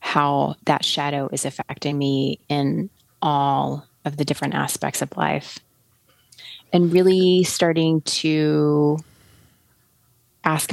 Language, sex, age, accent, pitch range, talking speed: English, female, 30-49, American, 140-165 Hz, 105 wpm